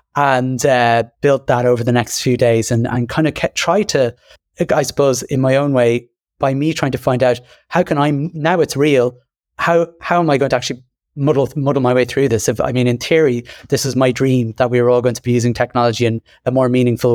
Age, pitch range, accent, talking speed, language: 30-49, 120-135 Hz, British, 240 wpm, English